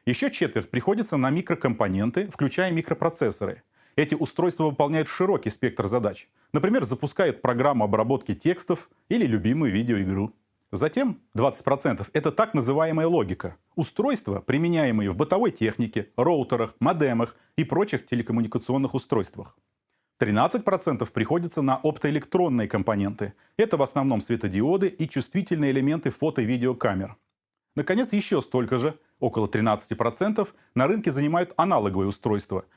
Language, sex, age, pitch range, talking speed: Russian, male, 30-49, 110-165 Hz, 115 wpm